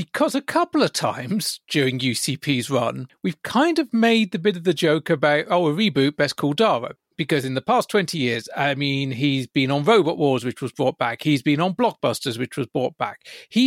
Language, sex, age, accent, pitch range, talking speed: English, male, 40-59, British, 135-200 Hz, 220 wpm